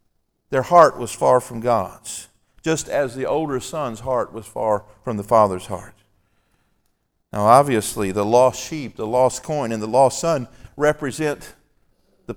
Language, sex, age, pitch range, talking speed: English, male, 50-69, 110-150 Hz, 155 wpm